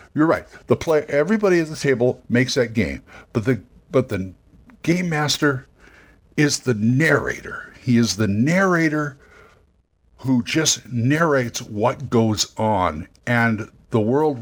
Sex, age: male, 60-79